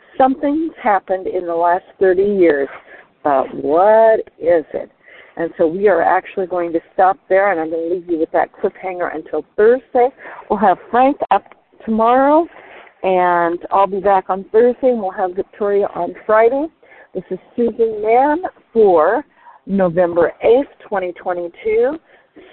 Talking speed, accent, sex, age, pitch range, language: 150 wpm, American, female, 50-69, 180-260 Hz, English